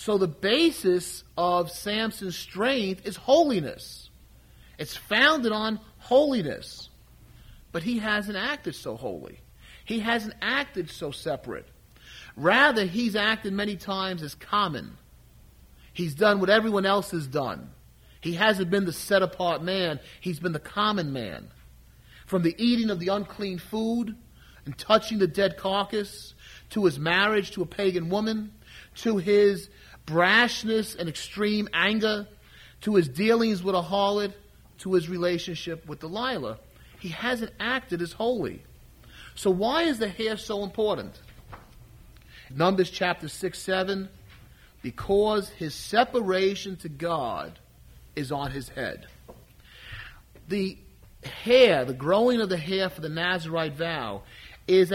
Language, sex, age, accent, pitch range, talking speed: English, male, 40-59, American, 165-215 Hz, 130 wpm